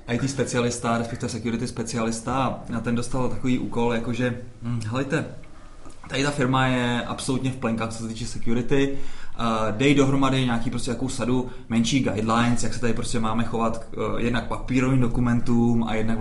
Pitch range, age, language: 115-145 Hz, 20-39, Czech